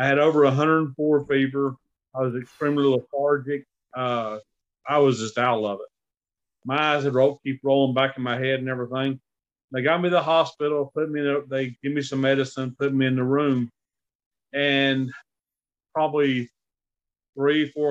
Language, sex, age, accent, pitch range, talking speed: English, male, 40-59, American, 130-155 Hz, 180 wpm